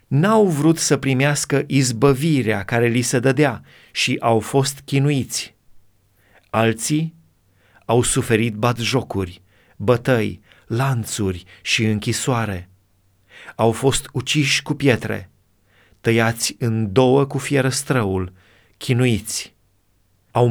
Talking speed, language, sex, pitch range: 95 wpm, Romanian, male, 110-145 Hz